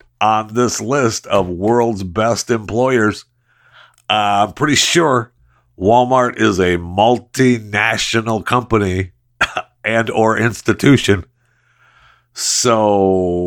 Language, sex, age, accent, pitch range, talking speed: English, male, 50-69, American, 85-120 Hz, 90 wpm